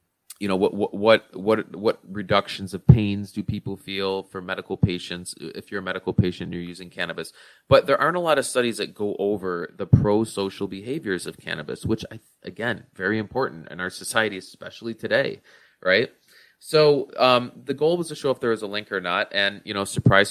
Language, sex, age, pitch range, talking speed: English, male, 20-39, 95-120 Hz, 200 wpm